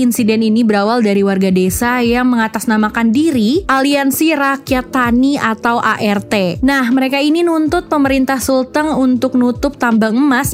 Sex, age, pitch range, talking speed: female, 20-39, 215-270 Hz, 135 wpm